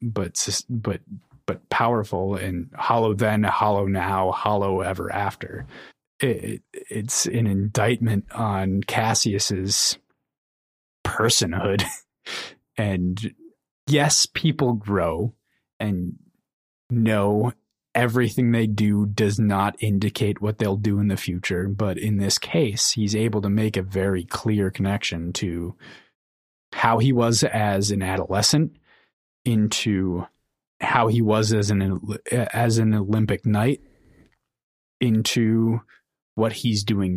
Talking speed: 115 wpm